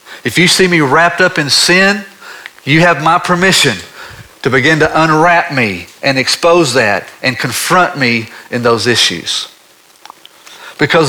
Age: 50-69